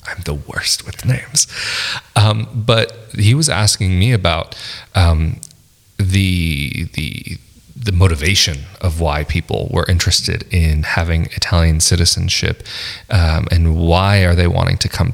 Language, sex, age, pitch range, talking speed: English, male, 30-49, 85-110 Hz, 135 wpm